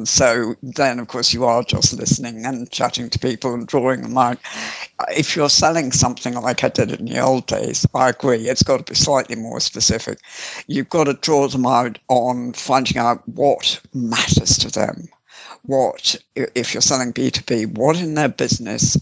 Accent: British